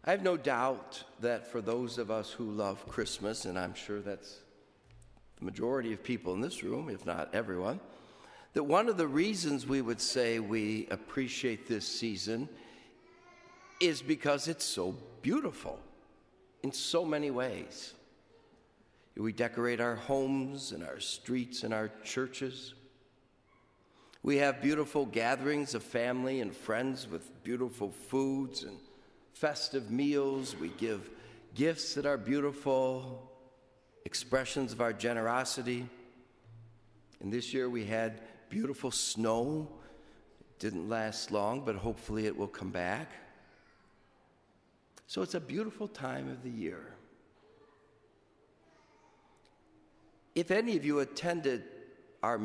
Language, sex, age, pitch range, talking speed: English, male, 60-79, 115-140 Hz, 130 wpm